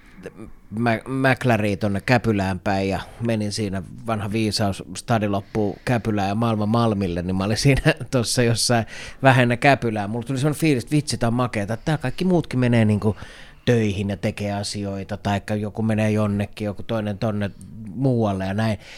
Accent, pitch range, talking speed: native, 105-125 Hz, 165 wpm